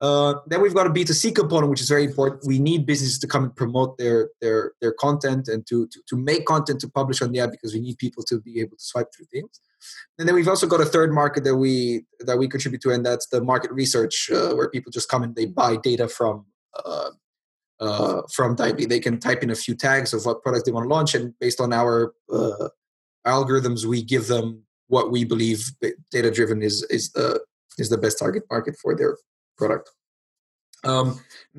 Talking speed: 225 wpm